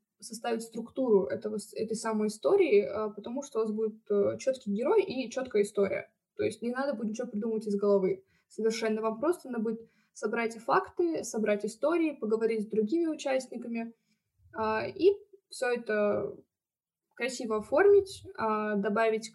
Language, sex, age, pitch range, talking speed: Russian, female, 20-39, 215-245 Hz, 135 wpm